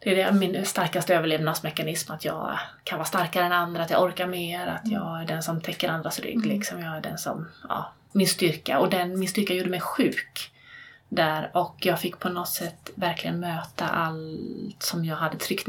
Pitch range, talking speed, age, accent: 175-210 Hz, 205 wpm, 20-39, native